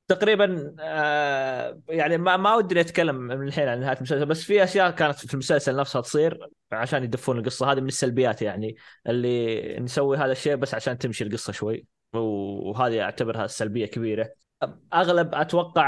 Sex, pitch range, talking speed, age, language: male, 115-140 Hz, 155 wpm, 20-39, Arabic